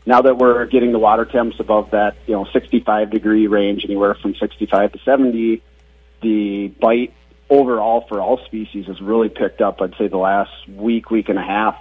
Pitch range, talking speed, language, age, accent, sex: 100-120 Hz, 190 wpm, English, 40-59, American, male